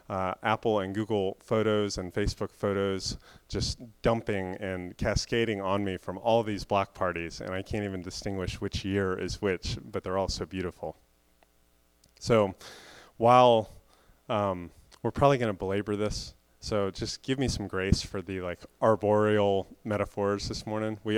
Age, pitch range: 30-49, 95-115 Hz